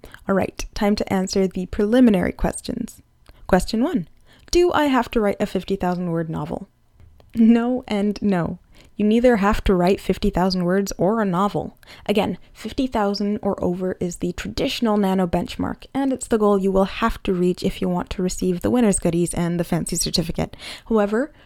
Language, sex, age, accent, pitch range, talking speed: English, female, 10-29, American, 185-240 Hz, 175 wpm